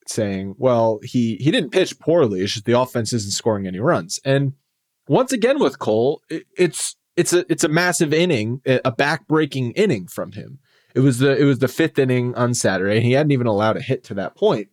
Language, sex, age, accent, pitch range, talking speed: English, male, 30-49, American, 120-145 Hz, 215 wpm